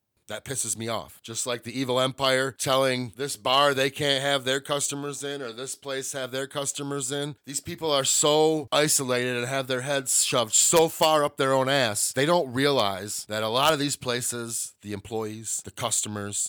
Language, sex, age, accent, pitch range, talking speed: English, male, 30-49, American, 105-140 Hz, 195 wpm